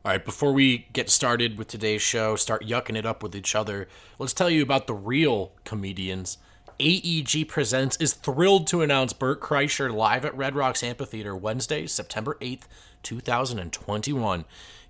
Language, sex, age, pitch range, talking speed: English, male, 30-49, 105-135 Hz, 160 wpm